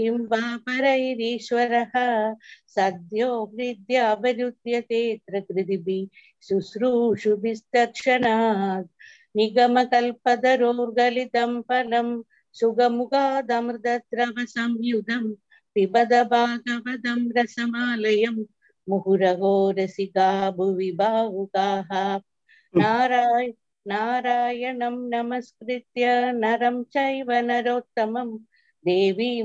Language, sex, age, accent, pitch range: Tamil, female, 50-69, native, 205-245 Hz